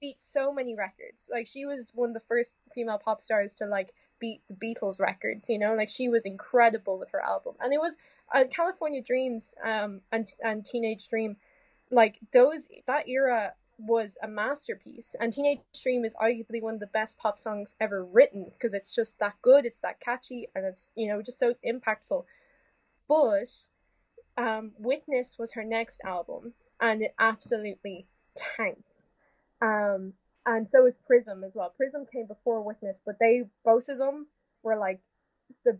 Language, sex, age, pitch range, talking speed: English, female, 10-29, 215-255 Hz, 175 wpm